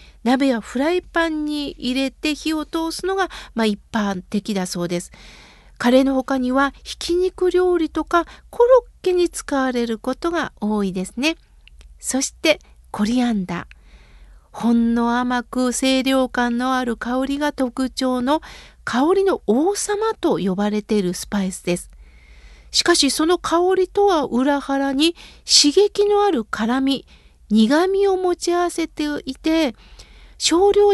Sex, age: female, 50-69